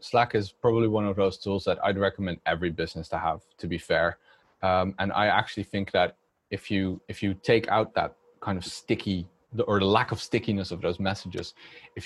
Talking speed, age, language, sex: 210 wpm, 20-39, English, male